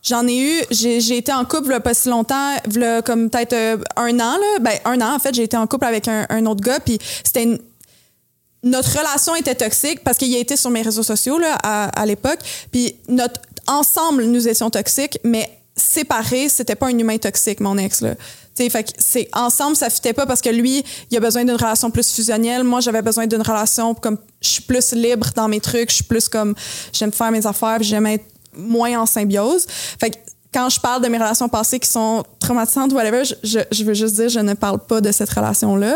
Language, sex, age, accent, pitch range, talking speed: French, female, 20-39, Canadian, 220-260 Hz, 225 wpm